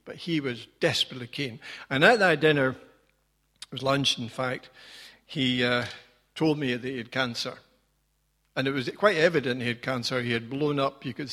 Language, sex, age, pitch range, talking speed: English, male, 60-79, 130-155 Hz, 190 wpm